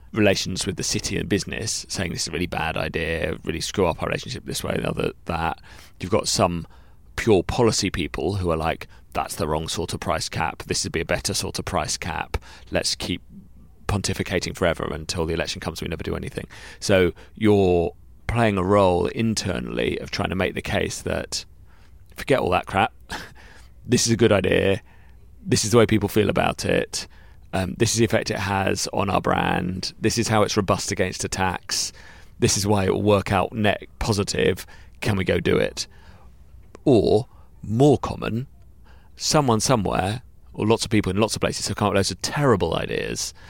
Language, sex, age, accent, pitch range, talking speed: English, male, 30-49, British, 90-110 Hz, 195 wpm